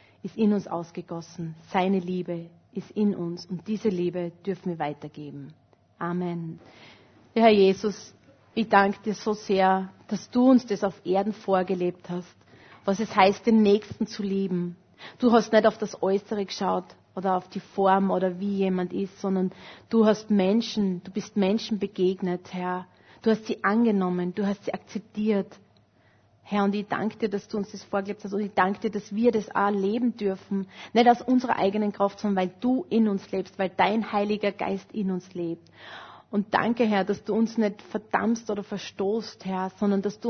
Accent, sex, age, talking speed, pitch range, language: Austrian, female, 30-49, 185 wpm, 185-220 Hz, German